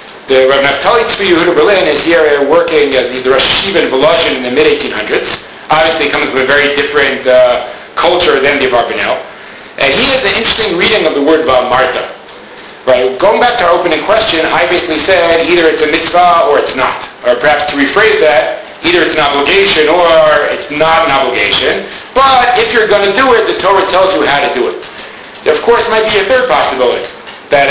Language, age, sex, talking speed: English, 50-69, male, 200 wpm